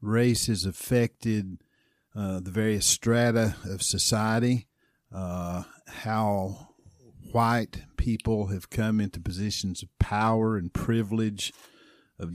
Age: 50-69